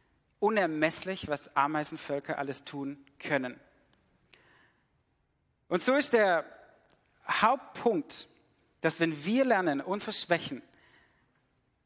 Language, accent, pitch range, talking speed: German, German, 145-205 Hz, 85 wpm